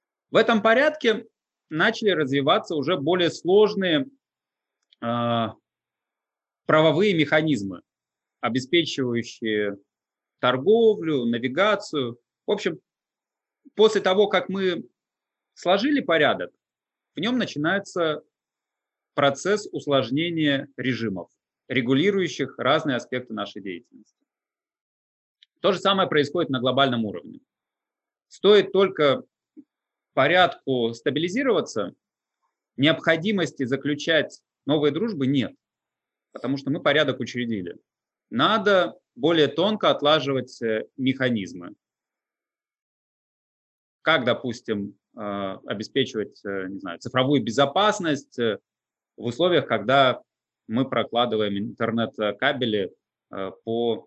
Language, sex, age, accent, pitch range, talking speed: Russian, male, 30-49, native, 115-185 Hz, 80 wpm